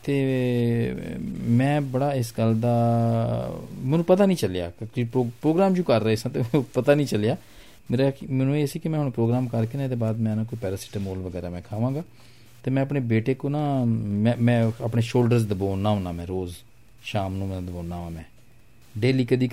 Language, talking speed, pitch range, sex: Punjabi, 185 wpm, 110-140 Hz, male